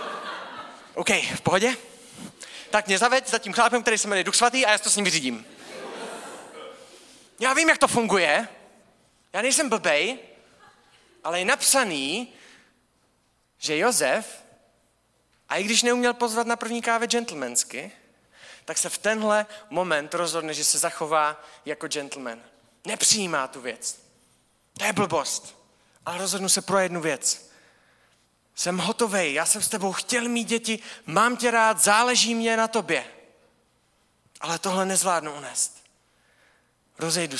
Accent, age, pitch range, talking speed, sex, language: native, 30-49, 140-225 Hz, 140 wpm, male, Czech